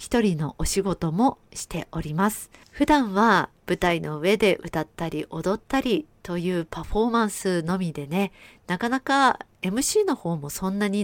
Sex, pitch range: female, 160-205 Hz